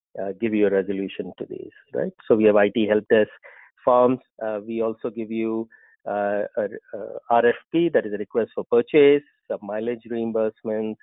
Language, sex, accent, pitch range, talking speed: English, male, Indian, 110-155 Hz, 175 wpm